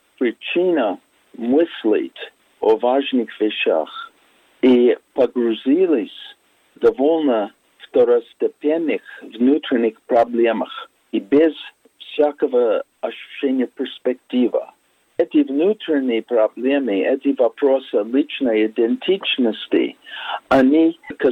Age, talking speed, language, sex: 50-69, 75 wpm, Russian, male